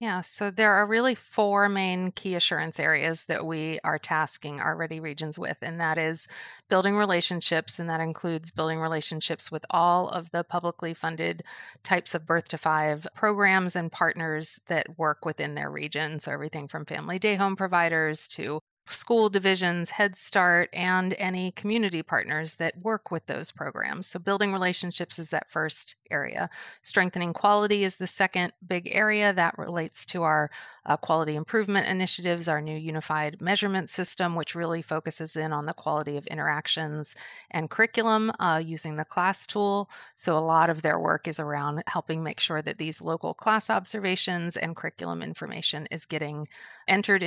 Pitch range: 155-185 Hz